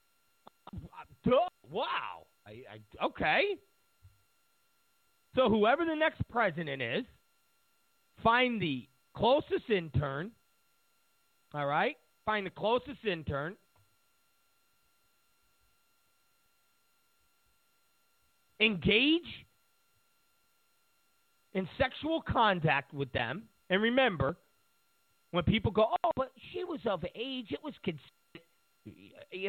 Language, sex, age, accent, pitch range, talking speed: English, male, 40-59, American, 155-240 Hz, 85 wpm